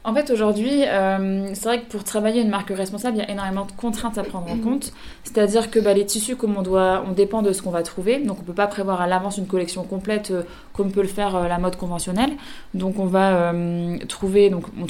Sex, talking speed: female, 240 wpm